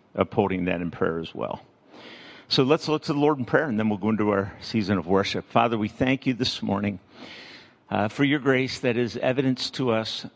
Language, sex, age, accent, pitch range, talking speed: English, male, 50-69, American, 110-135 Hz, 220 wpm